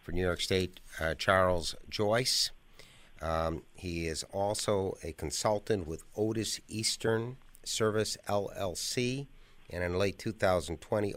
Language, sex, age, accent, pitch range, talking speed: English, male, 50-69, American, 85-105 Hz, 120 wpm